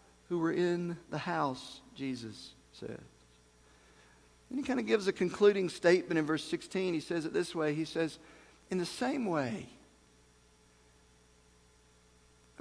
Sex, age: male, 50-69